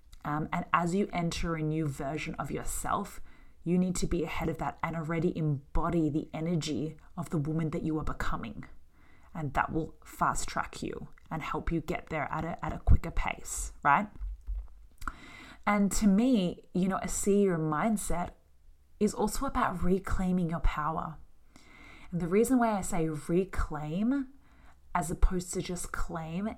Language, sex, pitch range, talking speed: English, female, 155-190 Hz, 165 wpm